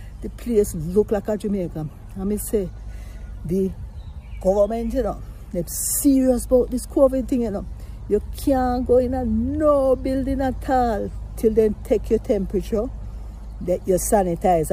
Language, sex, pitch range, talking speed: English, female, 160-225 Hz, 155 wpm